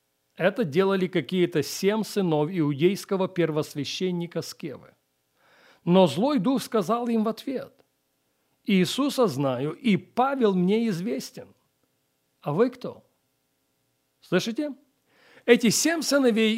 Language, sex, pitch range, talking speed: Russian, male, 165-235 Hz, 100 wpm